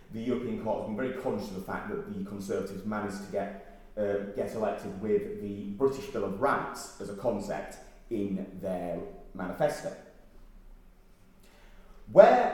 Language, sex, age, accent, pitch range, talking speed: English, male, 30-49, British, 95-135 Hz, 155 wpm